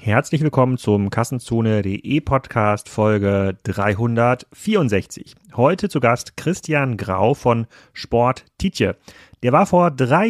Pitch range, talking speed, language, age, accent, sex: 120-150 Hz, 100 wpm, German, 30-49, German, male